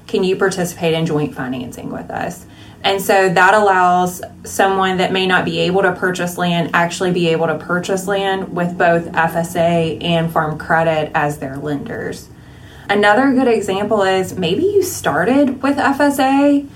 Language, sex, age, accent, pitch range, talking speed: English, female, 20-39, American, 175-205 Hz, 160 wpm